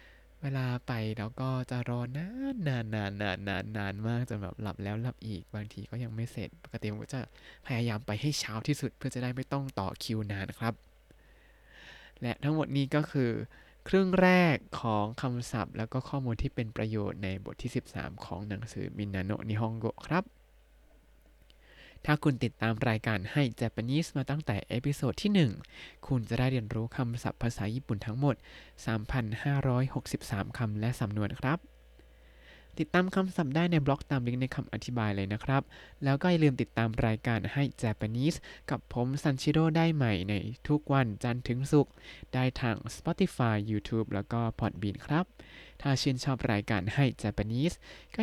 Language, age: Thai, 20-39